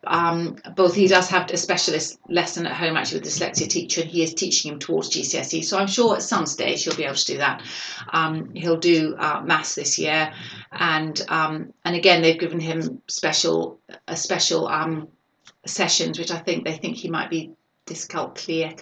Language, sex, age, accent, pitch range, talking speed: English, female, 30-49, British, 165-185 Hz, 200 wpm